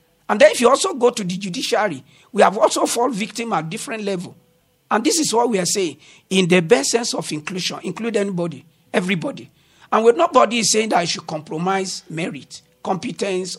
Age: 50-69